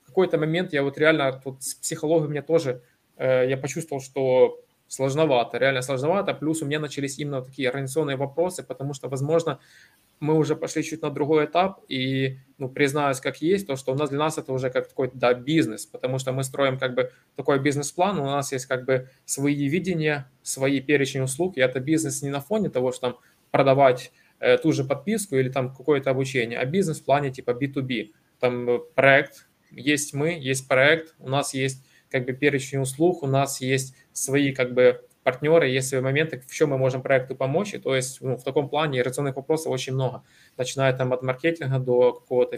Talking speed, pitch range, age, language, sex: 195 wpm, 130-150 Hz, 20-39, Russian, male